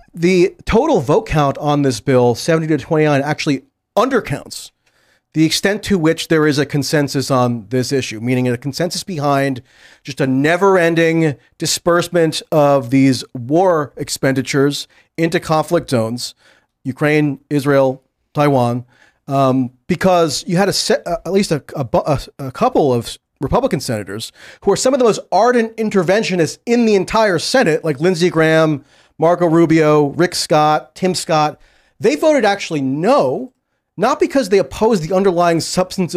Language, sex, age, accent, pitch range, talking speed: English, male, 40-59, American, 140-190 Hz, 150 wpm